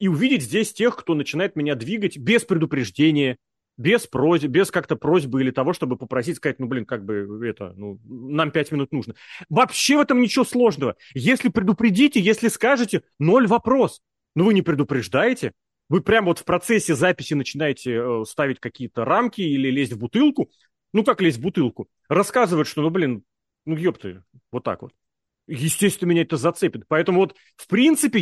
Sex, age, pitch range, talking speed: male, 30-49, 140-215 Hz, 170 wpm